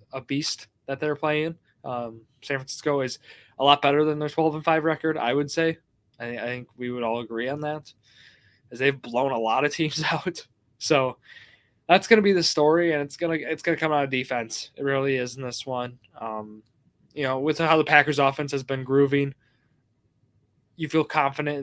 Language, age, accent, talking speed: English, 20-39, American, 210 wpm